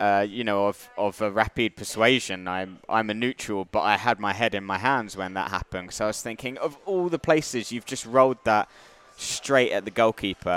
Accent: British